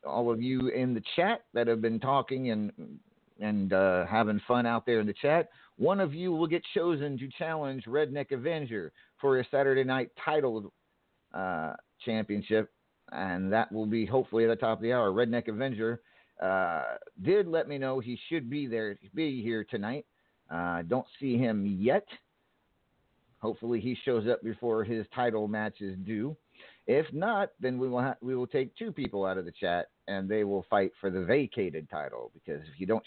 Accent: American